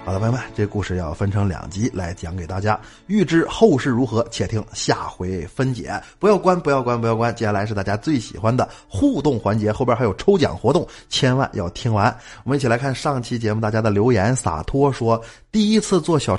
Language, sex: Chinese, male